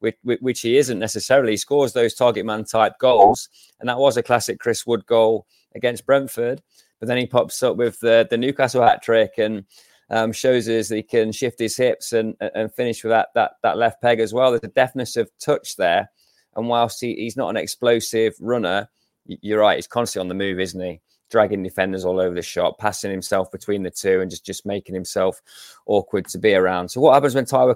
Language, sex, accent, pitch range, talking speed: English, male, British, 100-120 Hz, 220 wpm